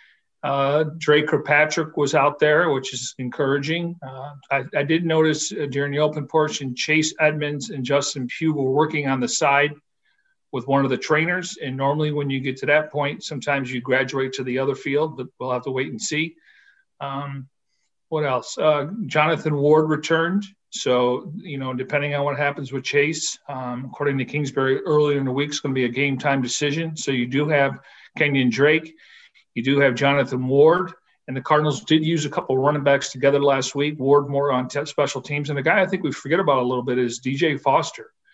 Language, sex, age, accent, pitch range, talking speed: English, male, 50-69, American, 135-155 Hz, 205 wpm